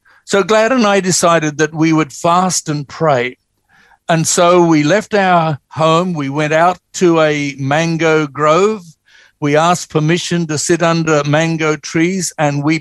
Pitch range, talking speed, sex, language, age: 150-175 Hz, 160 wpm, male, English, 60-79